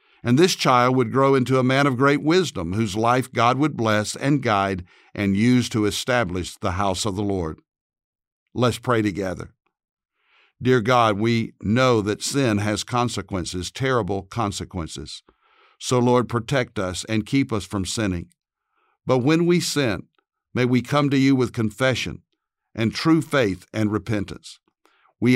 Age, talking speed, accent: 60-79, 155 wpm, American